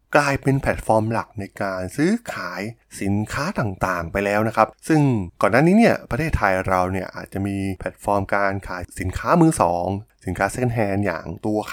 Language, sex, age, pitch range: Thai, male, 20-39, 95-125 Hz